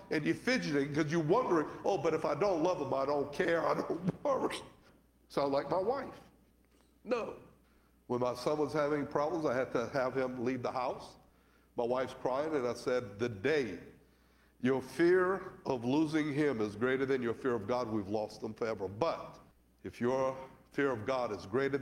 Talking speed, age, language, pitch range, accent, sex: 195 wpm, 60-79, English, 115-165 Hz, American, male